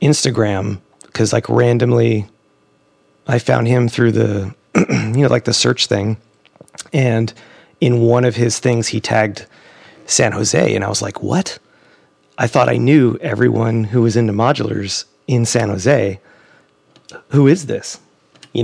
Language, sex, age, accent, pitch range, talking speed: English, male, 30-49, American, 105-120 Hz, 150 wpm